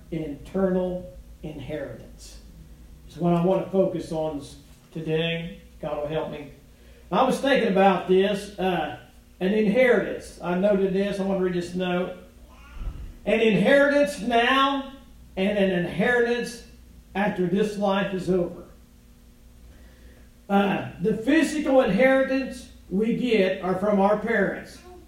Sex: male